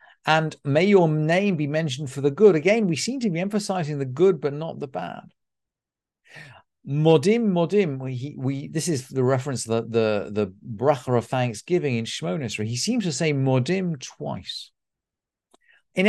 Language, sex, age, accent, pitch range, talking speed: English, male, 50-69, British, 115-155 Hz, 170 wpm